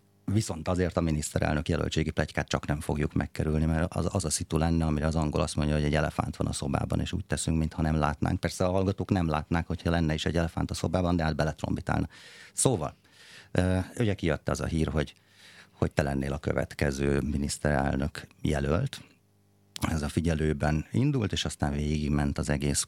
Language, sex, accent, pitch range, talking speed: English, male, Finnish, 75-95 Hz, 190 wpm